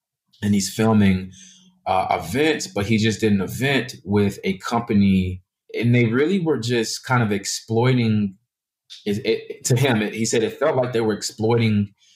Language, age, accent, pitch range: English, 20-39, American, 95-110 Hz